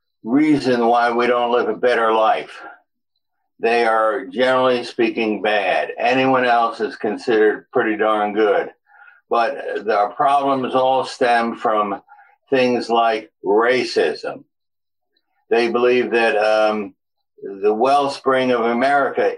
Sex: male